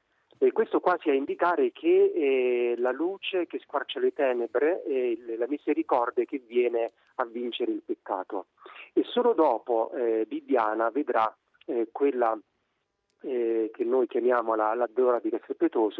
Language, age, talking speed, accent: Italian, 40-59, 145 wpm, native